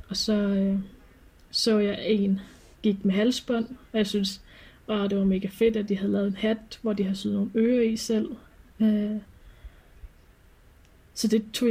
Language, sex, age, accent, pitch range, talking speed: Danish, female, 20-39, native, 195-220 Hz, 180 wpm